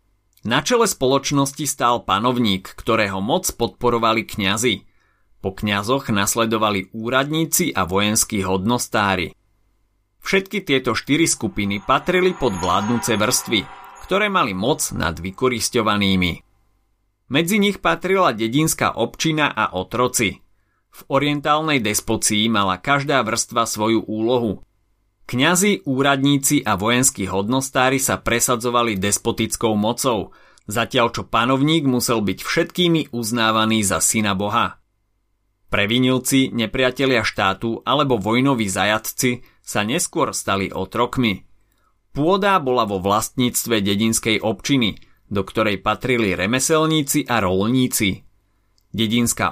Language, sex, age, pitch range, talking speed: Slovak, male, 30-49, 100-130 Hz, 105 wpm